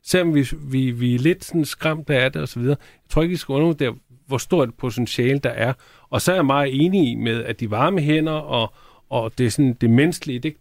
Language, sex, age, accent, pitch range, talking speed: Danish, male, 40-59, native, 125-155 Hz, 240 wpm